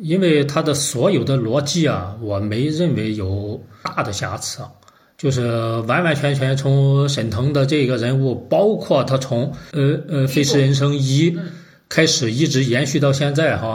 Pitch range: 120-155 Hz